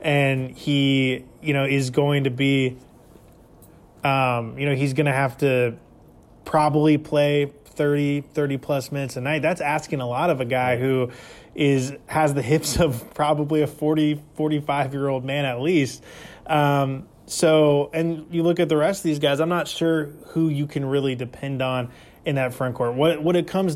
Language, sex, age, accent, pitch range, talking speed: English, male, 20-39, American, 130-150 Hz, 185 wpm